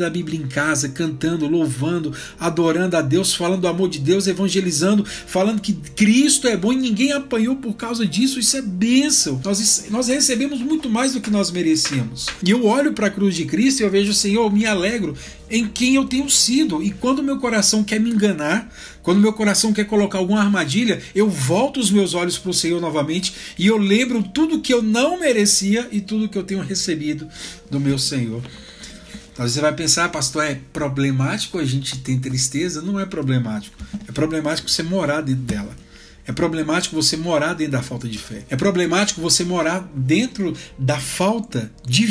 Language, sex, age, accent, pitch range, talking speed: Portuguese, male, 60-79, Brazilian, 135-210 Hz, 190 wpm